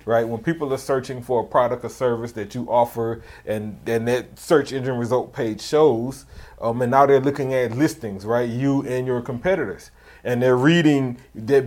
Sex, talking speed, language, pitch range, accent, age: male, 190 wpm, English, 125-160 Hz, American, 30-49